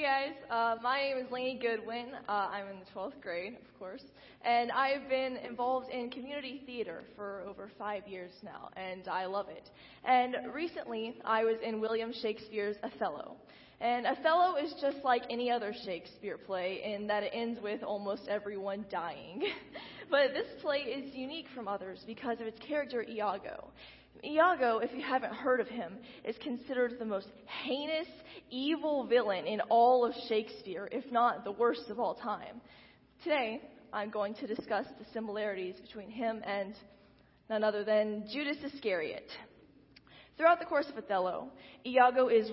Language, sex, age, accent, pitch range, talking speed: English, female, 10-29, American, 210-265 Hz, 160 wpm